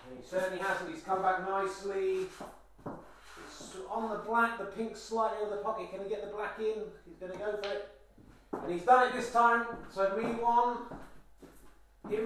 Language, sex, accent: English, male, British